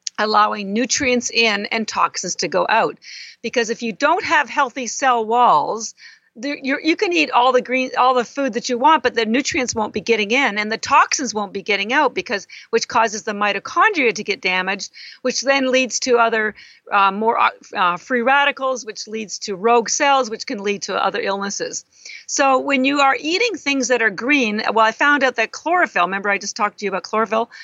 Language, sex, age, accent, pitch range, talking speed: English, female, 50-69, American, 225-280 Hz, 210 wpm